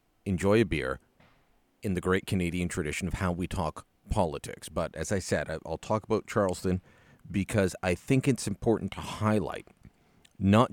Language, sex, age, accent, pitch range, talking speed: English, male, 40-59, American, 85-110 Hz, 160 wpm